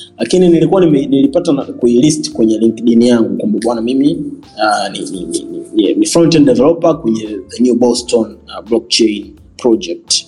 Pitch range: 115-155 Hz